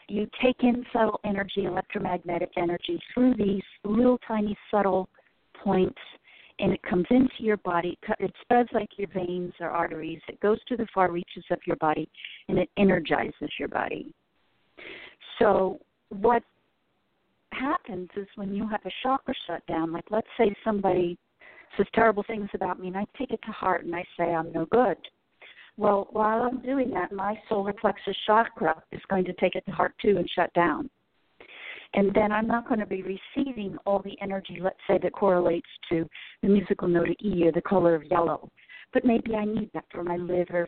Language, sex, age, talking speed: English, female, 40-59, 185 wpm